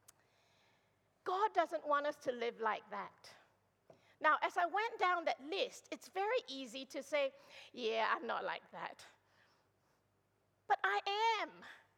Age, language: 50-69, English